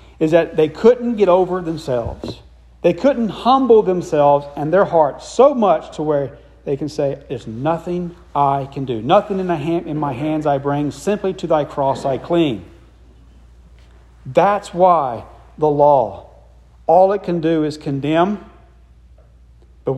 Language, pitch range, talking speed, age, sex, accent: English, 130-185 Hz, 150 wpm, 40-59, male, American